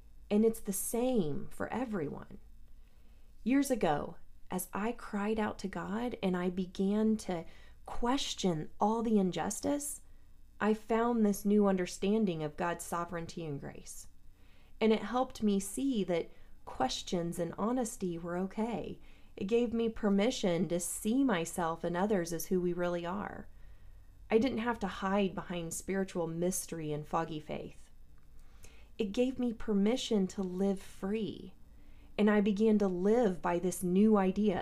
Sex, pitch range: female, 170-220 Hz